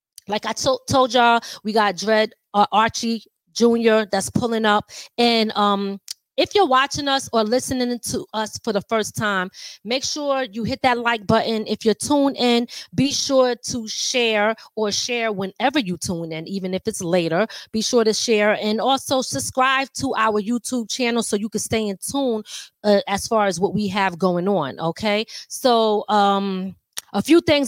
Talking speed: 180 wpm